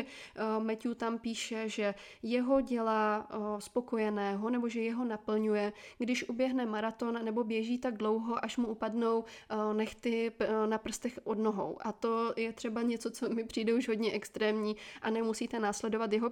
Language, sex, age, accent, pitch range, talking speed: Czech, female, 20-39, native, 215-235 Hz, 150 wpm